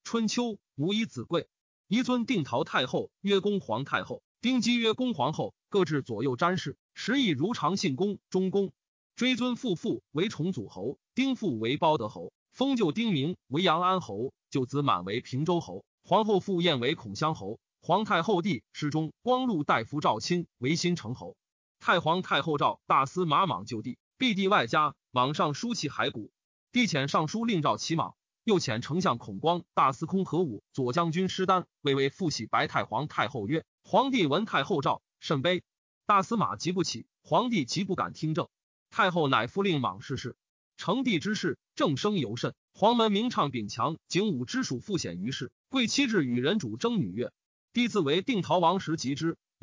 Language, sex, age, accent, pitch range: Chinese, male, 30-49, native, 145-210 Hz